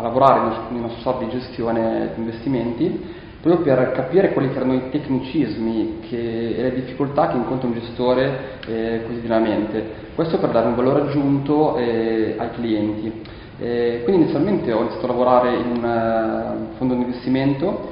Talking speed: 165 wpm